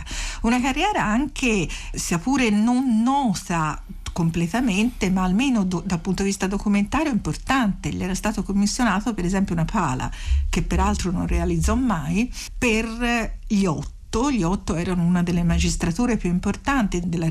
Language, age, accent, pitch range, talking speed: Italian, 50-69, native, 170-225 Hz, 140 wpm